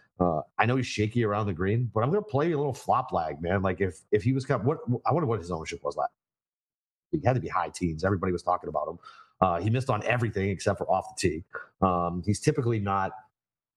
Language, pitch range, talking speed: English, 95-120 Hz, 255 wpm